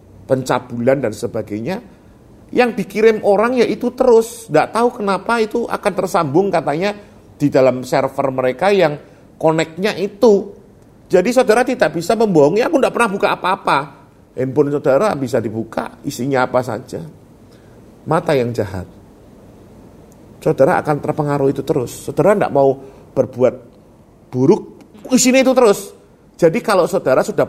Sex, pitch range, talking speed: male, 130-205 Hz, 130 wpm